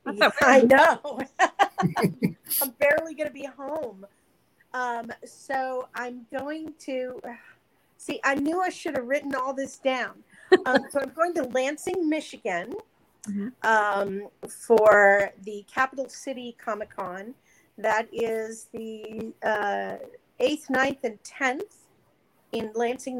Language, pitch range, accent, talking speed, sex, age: English, 220-275 Hz, American, 120 wpm, female, 40-59